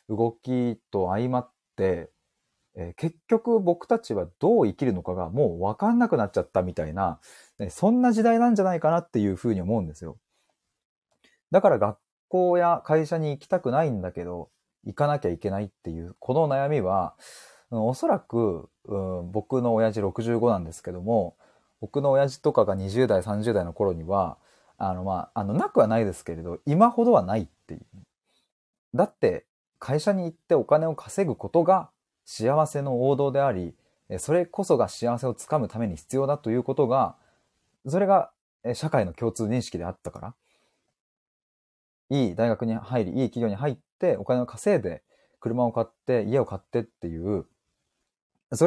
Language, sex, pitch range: Japanese, male, 100-155 Hz